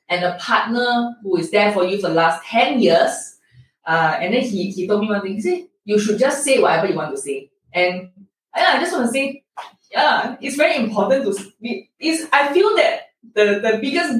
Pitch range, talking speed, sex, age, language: 200-290 Hz, 225 wpm, female, 10-29, English